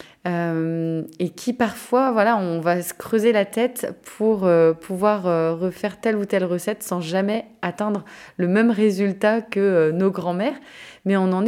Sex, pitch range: female, 180-225 Hz